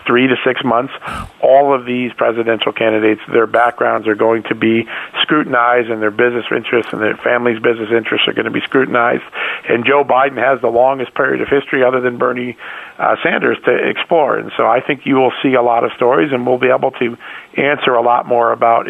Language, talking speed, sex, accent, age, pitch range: English, 215 wpm, male, American, 50-69, 115-125 Hz